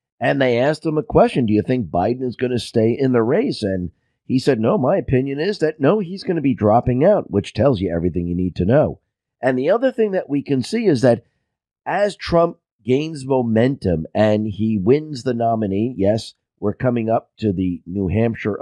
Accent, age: American, 50-69